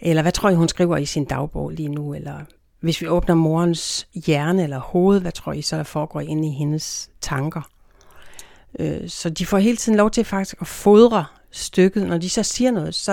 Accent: native